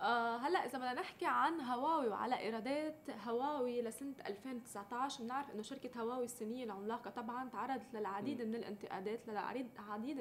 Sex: female